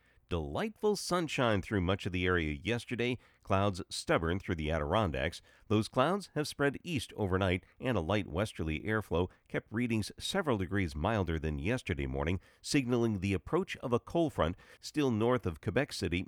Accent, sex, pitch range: American, male, 85-115 Hz